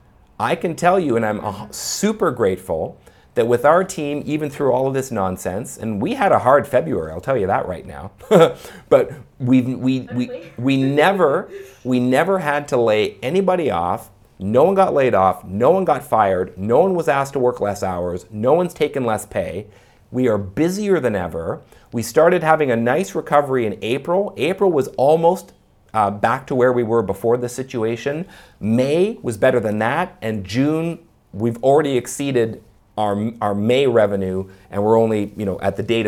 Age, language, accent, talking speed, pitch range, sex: 40-59, English, American, 185 wpm, 105-145 Hz, male